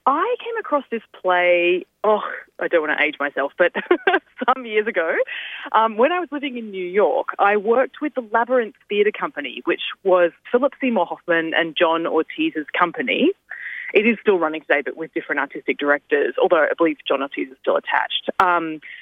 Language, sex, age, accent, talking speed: English, female, 20-39, Australian, 185 wpm